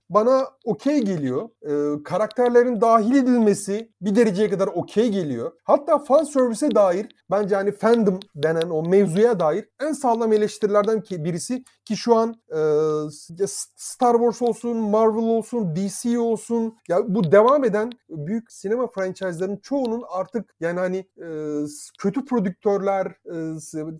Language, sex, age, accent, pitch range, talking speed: Turkish, male, 40-59, native, 180-230 Hz, 140 wpm